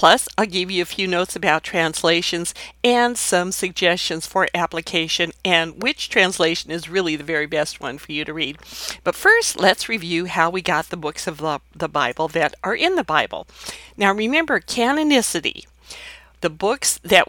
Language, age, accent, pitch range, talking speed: English, 50-69, American, 165-245 Hz, 175 wpm